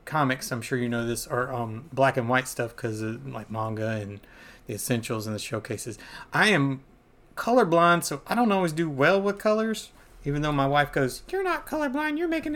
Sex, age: male, 30-49